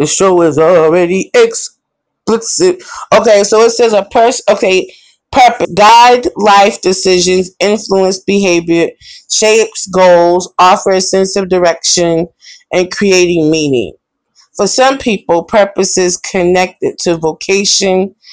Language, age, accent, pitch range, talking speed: English, 20-39, American, 165-200 Hz, 120 wpm